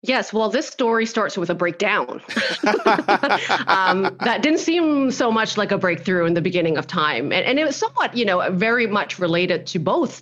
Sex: female